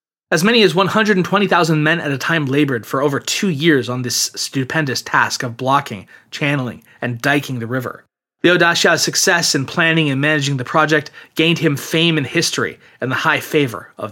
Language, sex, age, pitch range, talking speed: English, male, 30-49, 135-170 Hz, 185 wpm